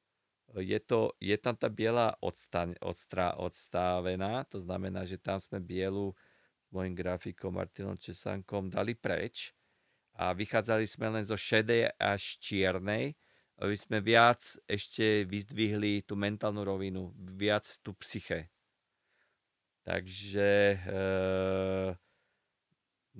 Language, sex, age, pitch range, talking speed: Slovak, male, 40-59, 95-115 Hz, 110 wpm